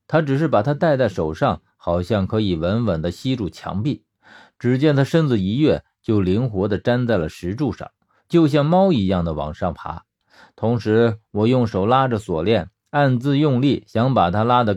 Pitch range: 95-140 Hz